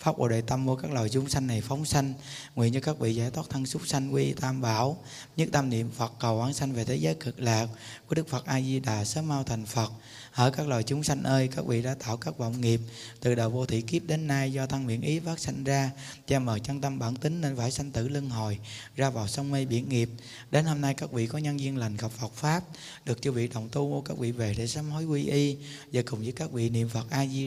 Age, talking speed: 20-39, 275 wpm